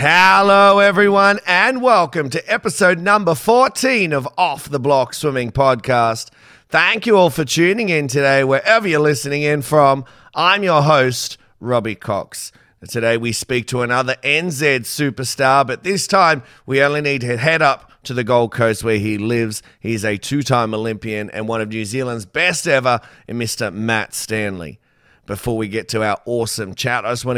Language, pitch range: English, 115-150 Hz